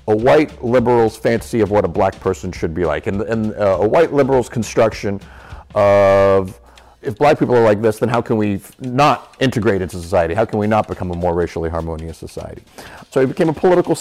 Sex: male